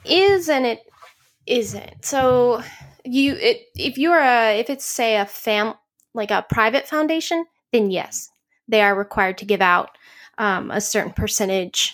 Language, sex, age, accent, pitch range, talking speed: English, female, 10-29, American, 190-235 Hz, 160 wpm